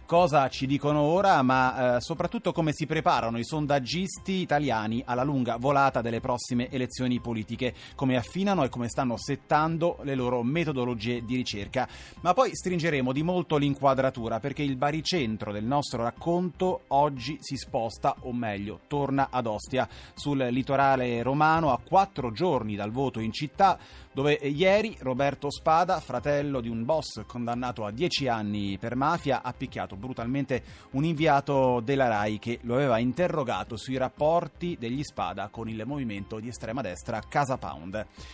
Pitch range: 120-160 Hz